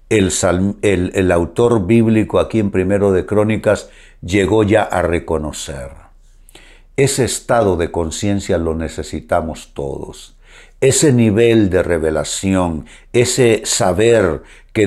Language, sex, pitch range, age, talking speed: Spanish, male, 95-130 Hz, 60-79, 115 wpm